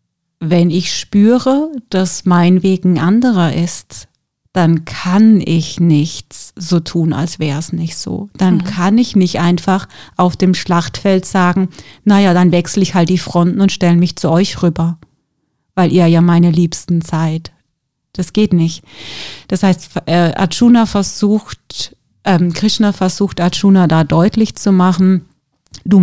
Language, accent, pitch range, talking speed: German, German, 165-190 Hz, 145 wpm